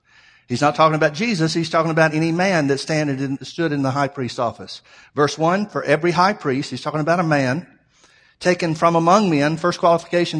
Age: 50-69